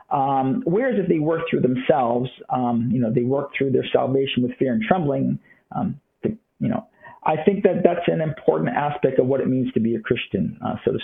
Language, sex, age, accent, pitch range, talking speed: English, male, 50-69, American, 135-210 Hz, 225 wpm